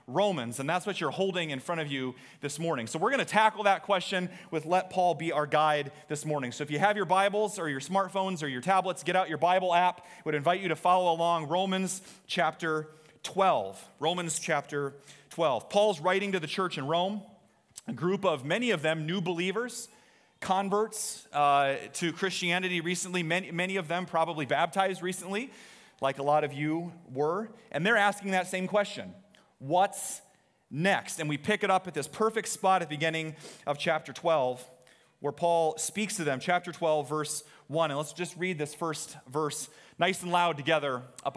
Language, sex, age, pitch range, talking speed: English, male, 30-49, 150-190 Hz, 195 wpm